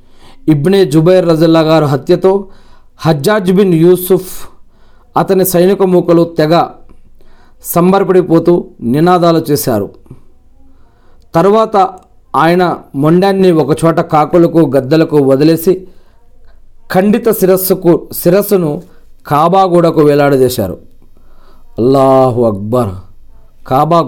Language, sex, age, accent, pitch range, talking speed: Telugu, male, 40-59, native, 130-185 Hz, 75 wpm